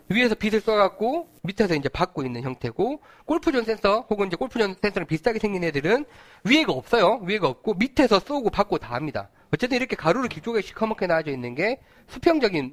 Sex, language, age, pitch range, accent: male, Korean, 40-59, 155-250 Hz, native